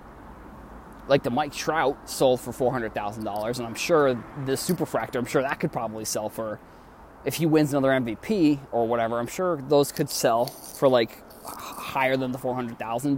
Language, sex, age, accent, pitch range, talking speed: English, male, 20-39, American, 110-140 Hz, 170 wpm